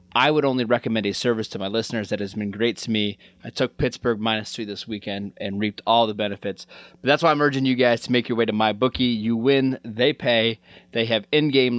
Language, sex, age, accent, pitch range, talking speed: English, male, 20-39, American, 110-130 Hz, 245 wpm